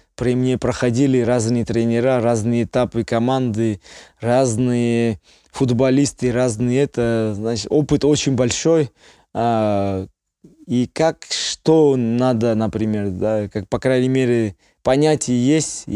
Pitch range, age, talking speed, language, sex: 105-125 Hz, 20-39, 110 wpm, Russian, male